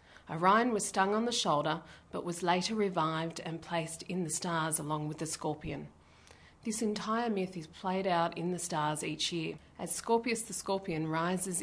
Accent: Australian